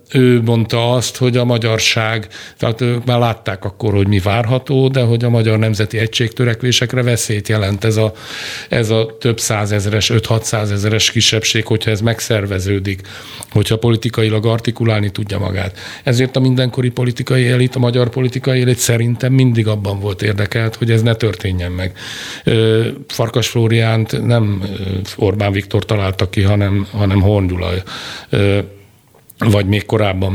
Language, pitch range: Hungarian, 100-120 Hz